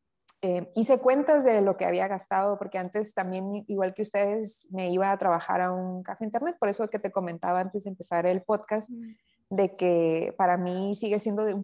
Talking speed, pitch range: 200 wpm, 185-220 Hz